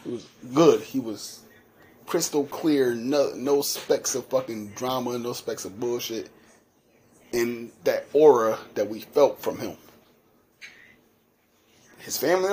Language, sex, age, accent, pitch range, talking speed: English, male, 30-49, American, 110-135 Hz, 130 wpm